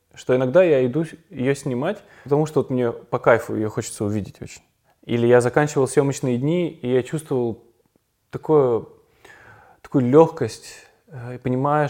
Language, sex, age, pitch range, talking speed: Russian, male, 20-39, 120-145 Hz, 140 wpm